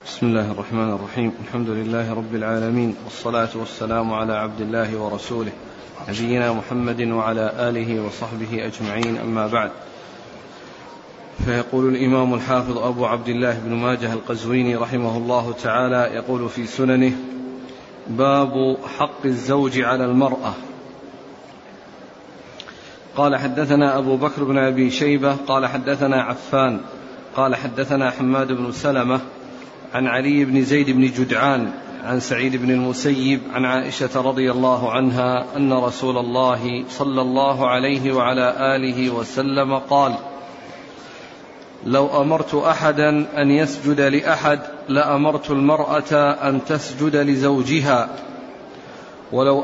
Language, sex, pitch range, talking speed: Arabic, male, 120-140 Hz, 115 wpm